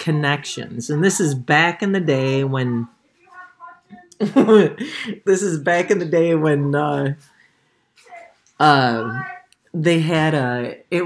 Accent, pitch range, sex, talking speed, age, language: American, 140-185 Hz, male, 120 wpm, 40-59, English